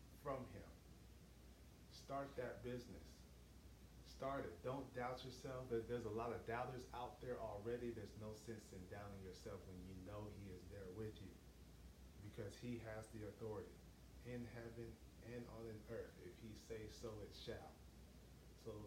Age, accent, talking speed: 30-49, American, 155 wpm